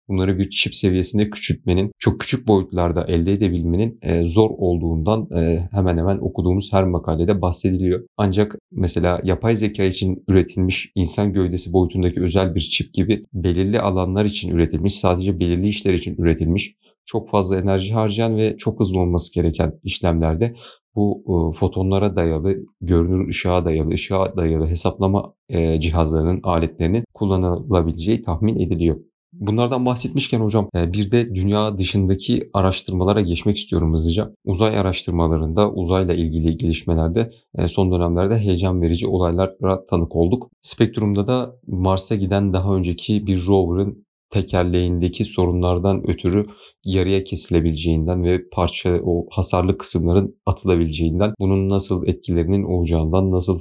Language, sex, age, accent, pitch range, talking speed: Turkish, male, 40-59, native, 85-100 Hz, 125 wpm